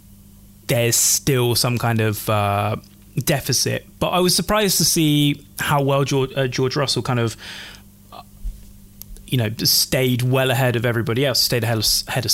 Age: 20-39